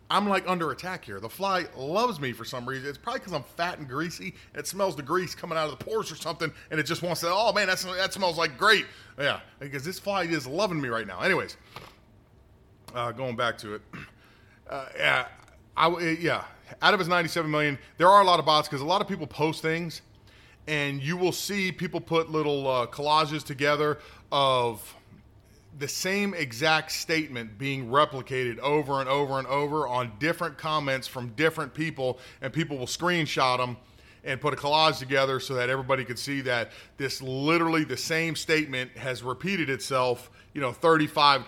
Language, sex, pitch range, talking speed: English, male, 130-165 Hz, 195 wpm